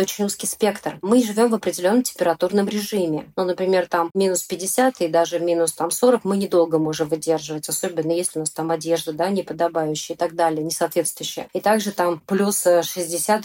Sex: female